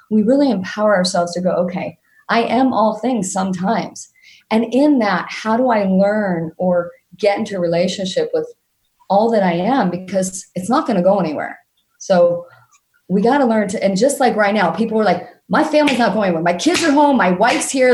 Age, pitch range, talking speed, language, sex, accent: 30-49, 185-240 Hz, 205 wpm, English, female, American